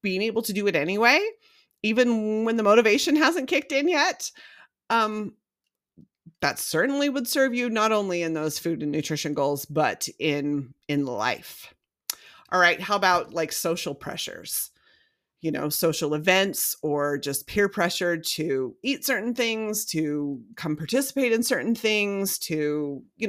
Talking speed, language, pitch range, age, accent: 150 wpm, English, 160-225 Hz, 30-49, American